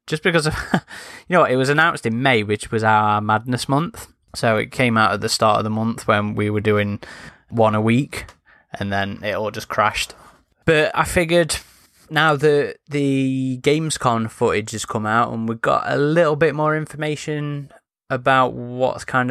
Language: English